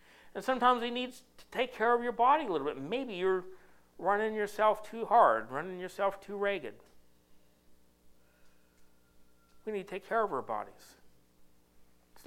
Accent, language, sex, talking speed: American, English, male, 155 wpm